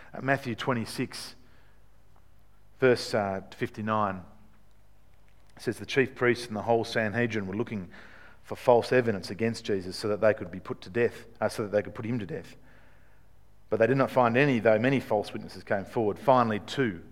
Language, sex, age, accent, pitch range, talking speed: English, male, 50-69, Australian, 95-115 Hz, 180 wpm